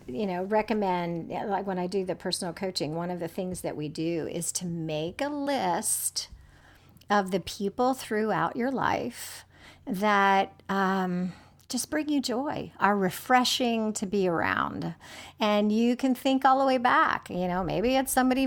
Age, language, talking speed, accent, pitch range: 50-69, English, 170 wpm, American, 190-255 Hz